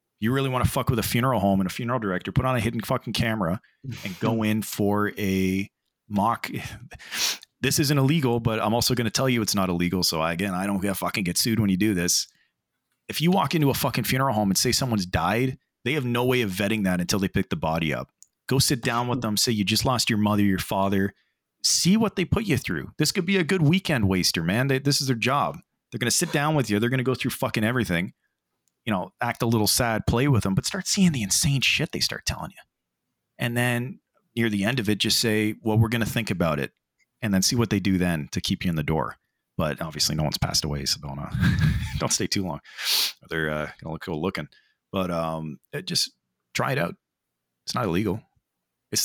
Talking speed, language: 245 wpm, English